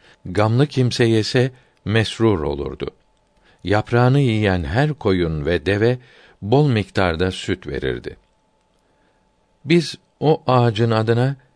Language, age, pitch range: Turkish, 60-79, 85-120 Hz